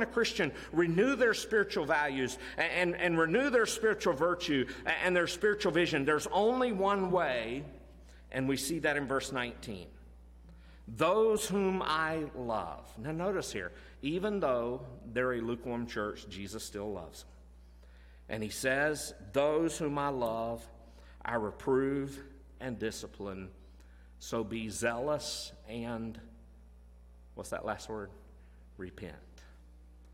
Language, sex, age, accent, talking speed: English, male, 50-69, American, 130 wpm